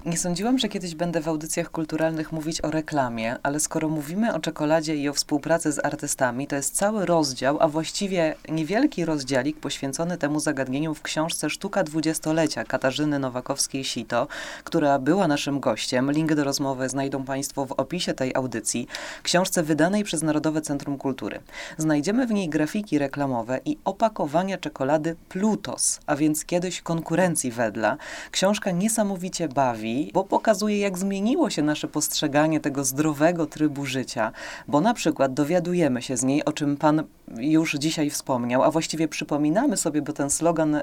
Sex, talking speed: female, 155 wpm